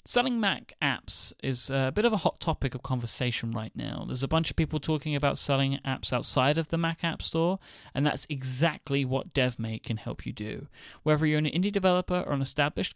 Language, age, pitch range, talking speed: English, 30-49, 130-170 Hz, 215 wpm